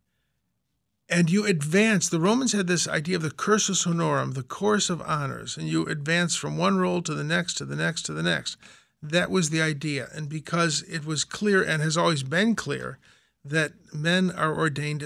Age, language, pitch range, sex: 50-69, English, 145-175 Hz, male